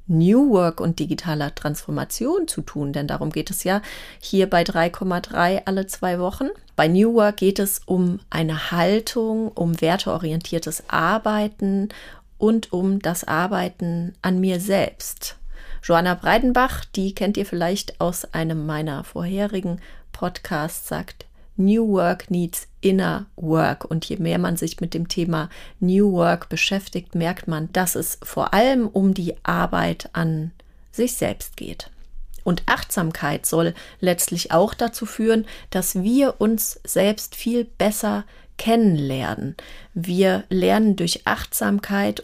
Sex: female